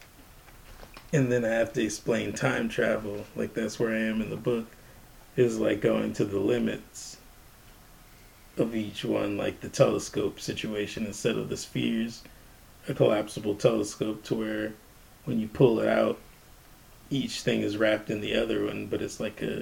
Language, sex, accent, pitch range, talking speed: English, male, American, 110-125 Hz, 170 wpm